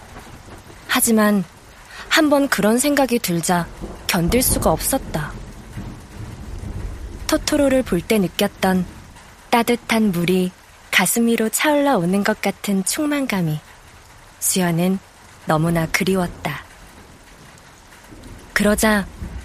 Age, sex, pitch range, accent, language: 20-39, female, 155-225 Hz, native, Korean